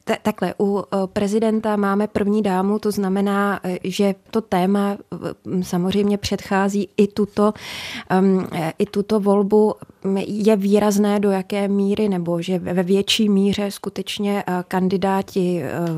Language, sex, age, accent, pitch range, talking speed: Czech, female, 20-39, native, 185-210 Hz, 115 wpm